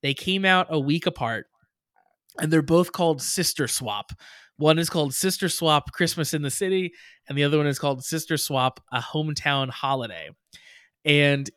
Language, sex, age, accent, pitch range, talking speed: English, male, 20-39, American, 135-185 Hz, 170 wpm